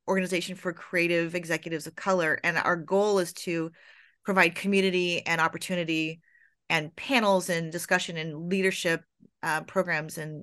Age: 30-49